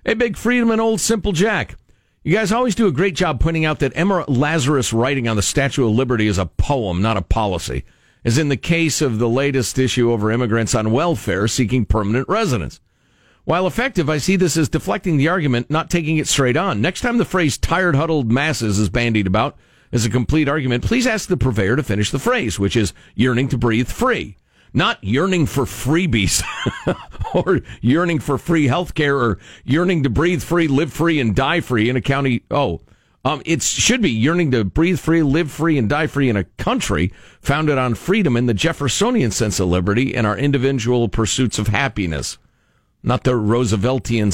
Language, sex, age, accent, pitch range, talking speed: English, male, 50-69, American, 115-160 Hz, 200 wpm